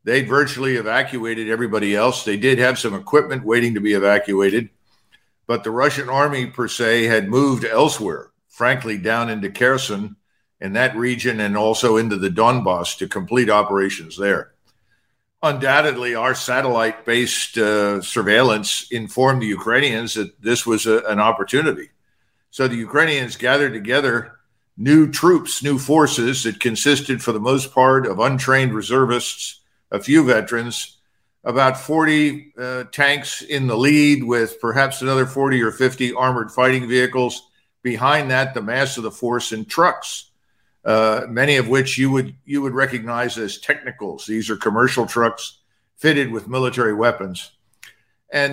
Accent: American